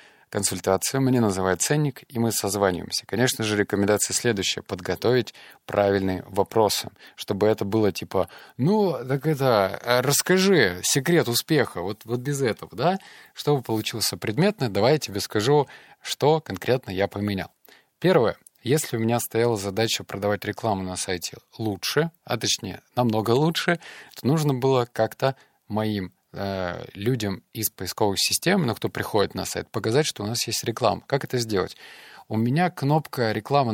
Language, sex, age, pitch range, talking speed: Russian, male, 20-39, 100-140 Hz, 145 wpm